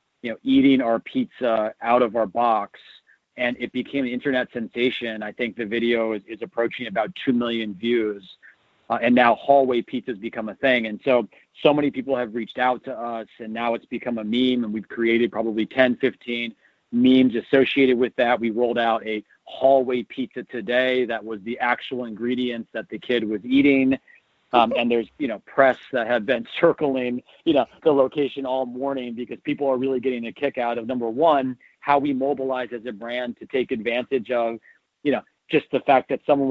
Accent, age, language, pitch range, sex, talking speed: American, 40-59, English, 115-130 Hz, male, 200 wpm